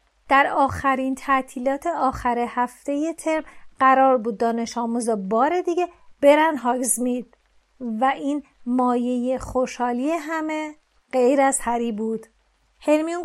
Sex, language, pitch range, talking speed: female, Persian, 245-300 Hz, 110 wpm